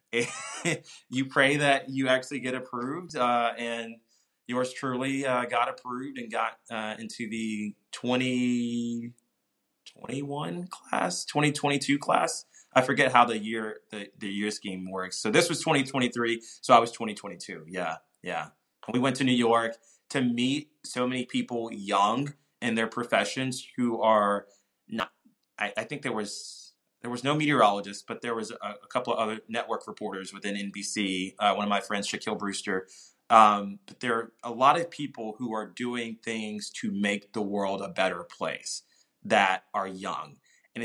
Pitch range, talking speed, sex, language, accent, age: 100-125 Hz, 165 wpm, male, English, American, 20-39